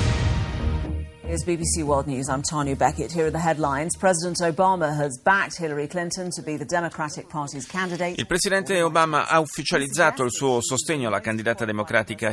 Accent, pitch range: native, 105-140 Hz